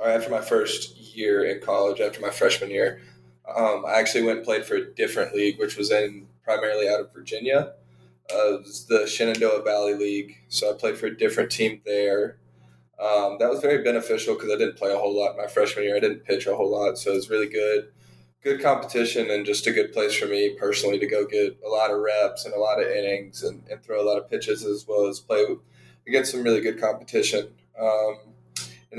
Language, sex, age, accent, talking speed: English, male, 20-39, American, 225 wpm